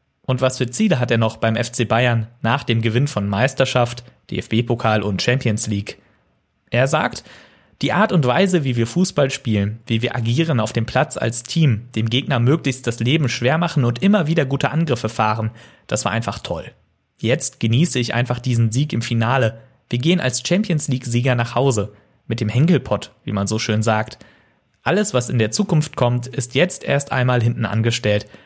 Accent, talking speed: German, 190 wpm